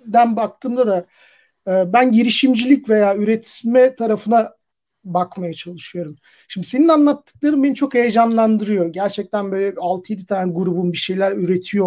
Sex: male